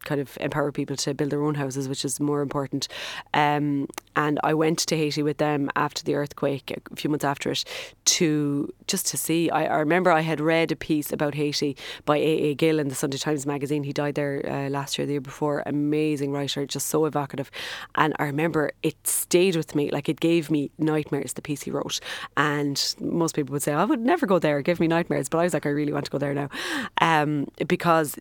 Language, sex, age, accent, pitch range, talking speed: English, female, 20-39, Irish, 145-160 Hz, 230 wpm